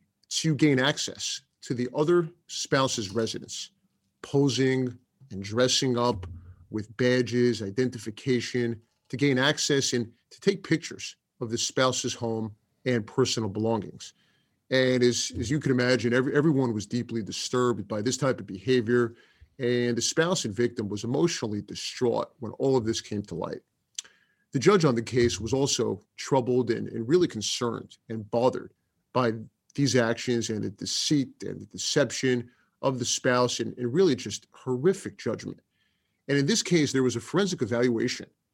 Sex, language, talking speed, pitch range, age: male, English, 155 wpm, 115-135 Hz, 40-59